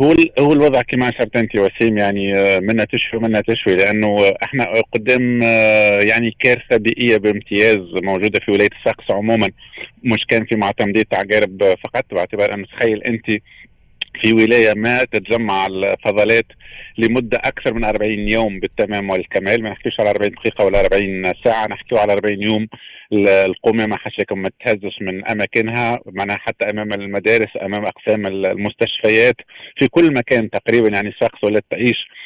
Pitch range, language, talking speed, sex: 100-115 Hz, Arabic, 145 wpm, male